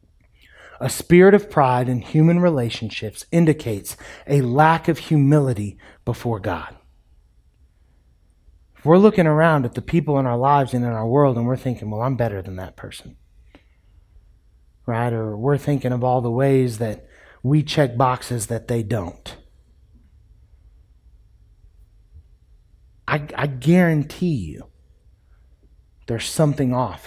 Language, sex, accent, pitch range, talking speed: English, male, American, 100-155 Hz, 130 wpm